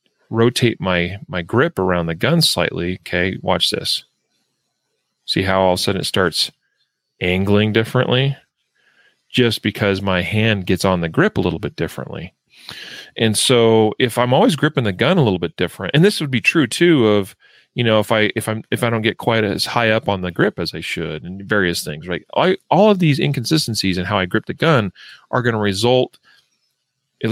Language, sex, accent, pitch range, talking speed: English, male, American, 95-120 Hz, 200 wpm